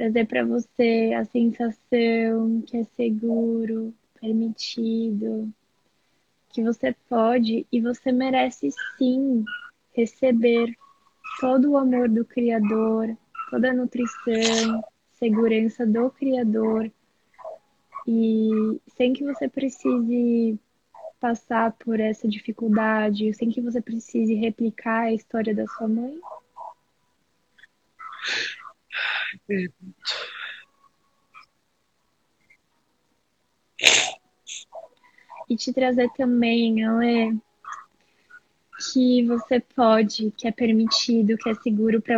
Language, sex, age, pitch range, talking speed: Portuguese, female, 10-29, 225-245 Hz, 90 wpm